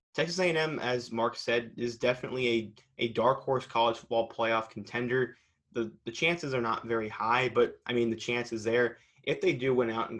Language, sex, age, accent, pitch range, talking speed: English, male, 20-39, American, 115-125 Hz, 200 wpm